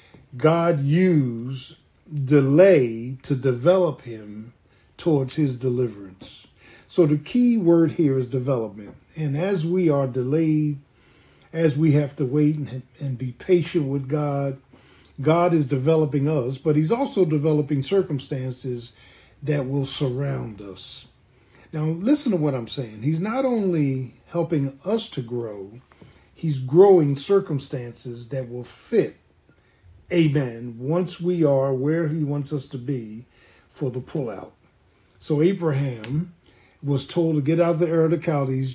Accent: American